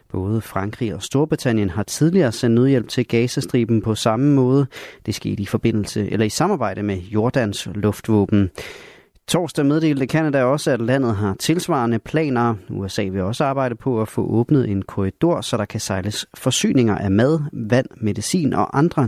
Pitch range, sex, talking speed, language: 105-135 Hz, male, 165 wpm, Danish